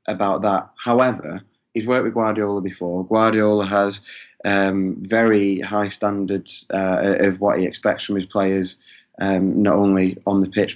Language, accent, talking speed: English, British, 155 wpm